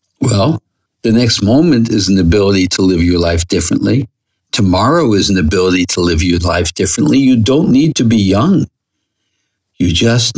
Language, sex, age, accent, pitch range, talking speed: English, male, 60-79, American, 95-115 Hz, 170 wpm